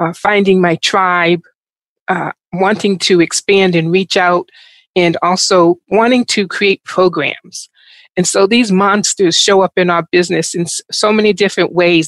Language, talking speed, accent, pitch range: English, 160 wpm, American, 180-220 Hz